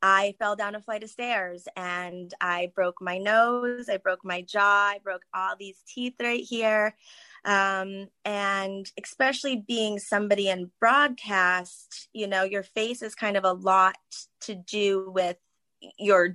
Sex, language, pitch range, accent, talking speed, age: female, English, 190-240 Hz, American, 160 wpm, 20-39